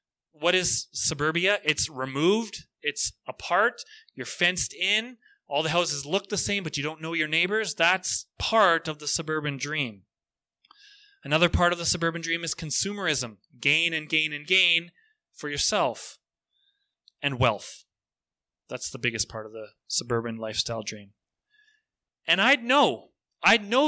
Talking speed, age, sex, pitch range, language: 150 wpm, 30-49, male, 155-215 Hz, English